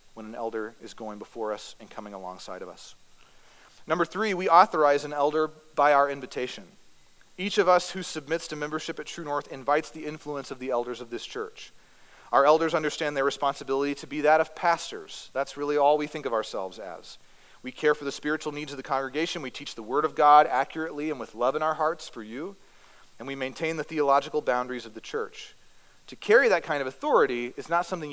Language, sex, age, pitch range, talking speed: English, male, 40-59, 130-160 Hz, 215 wpm